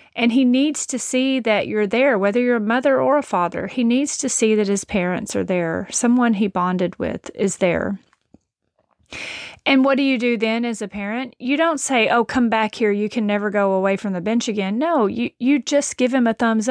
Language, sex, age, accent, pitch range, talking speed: English, female, 30-49, American, 205-270 Hz, 225 wpm